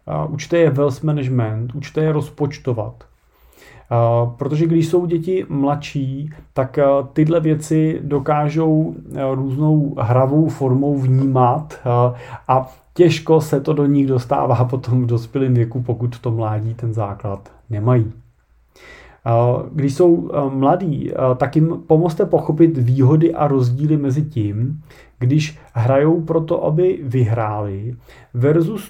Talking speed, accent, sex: 115 wpm, native, male